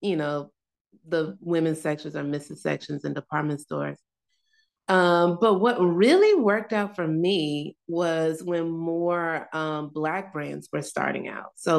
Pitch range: 155-190 Hz